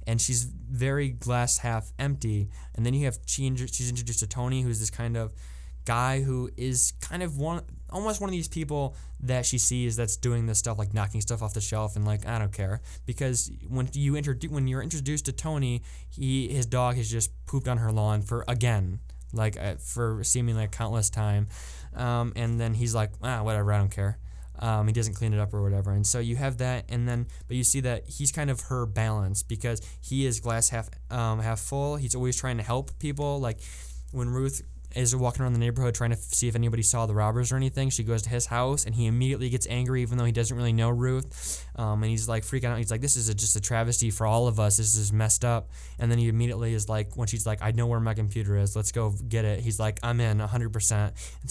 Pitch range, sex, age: 110-125 Hz, male, 10-29